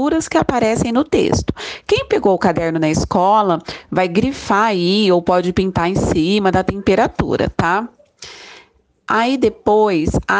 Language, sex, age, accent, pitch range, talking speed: Portuguese, female, 40-59, Brazilian, 180-230 Hz, 140 wpm